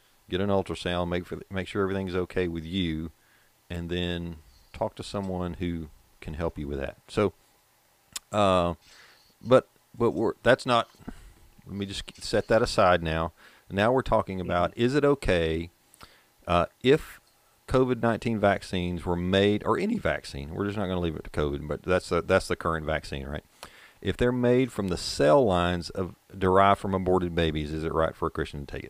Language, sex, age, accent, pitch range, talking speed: English, male, 40-59, American, 80-100 Hz, 185 wpm